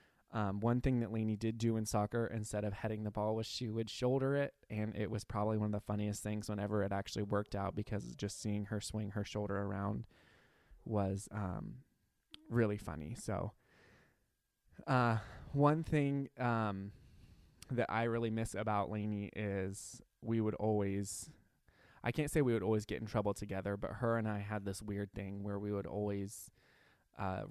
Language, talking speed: English, 180 wpm